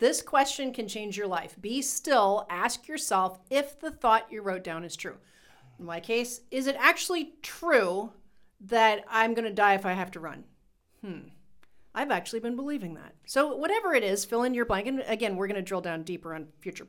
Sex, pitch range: female, 195-270 Hz